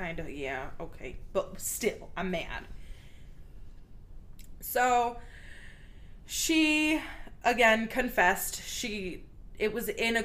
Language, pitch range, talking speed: English, 185-250 Hz, 100 wpm